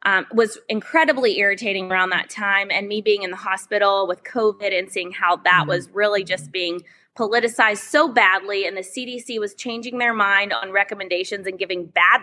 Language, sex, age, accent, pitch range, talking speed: English, female, 20-39, American, 185-230 Hz, 185 wpm